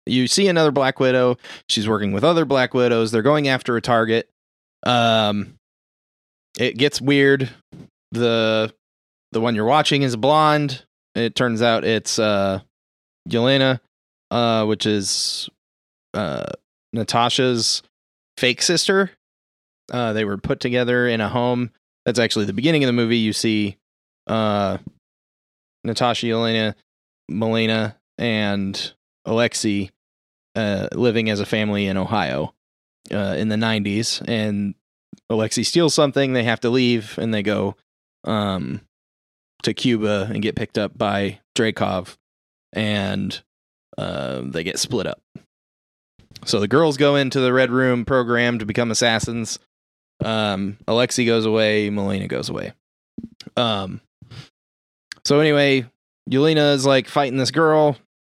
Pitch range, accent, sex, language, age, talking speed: 95-125 Hz, American, male, English, 20-39, 130 wpm